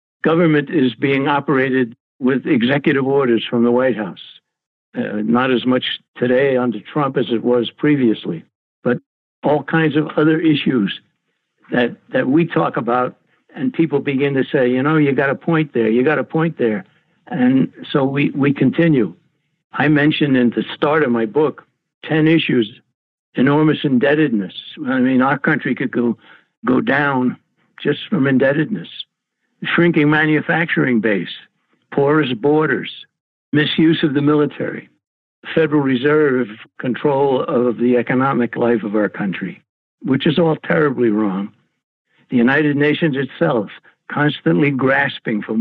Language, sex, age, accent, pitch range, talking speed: English, male, 60-79, American, 120-150 Hz, 145 wpm